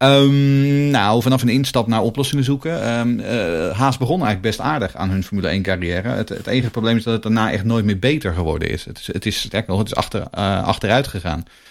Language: Dutch